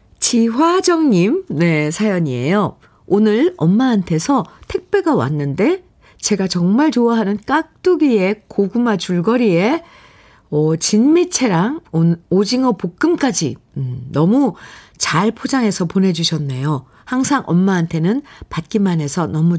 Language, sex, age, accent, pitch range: Korean, female, 50-69, native, 160-230 Hz